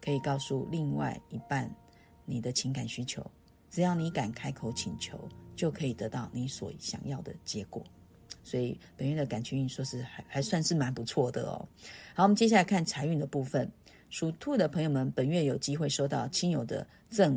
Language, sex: Chinese, female